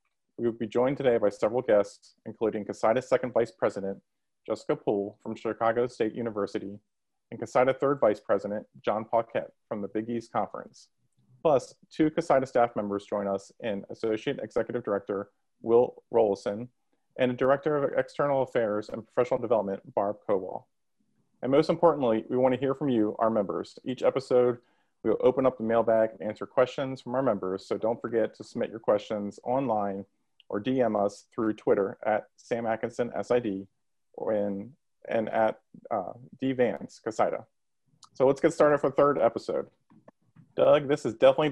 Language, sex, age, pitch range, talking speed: English, male, 30-49, 105-130 Hz, 170 wpm